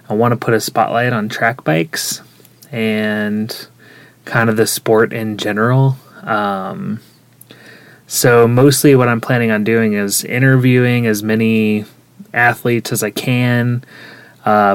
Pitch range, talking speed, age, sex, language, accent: 110-125 Hz, 135 wpm, 20-39, male, English, American